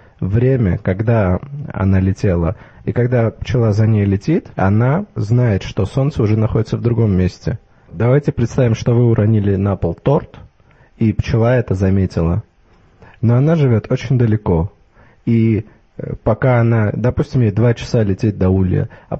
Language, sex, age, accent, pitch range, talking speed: Russian, male, 20-39, native, 100-125 Hz, 145 wpm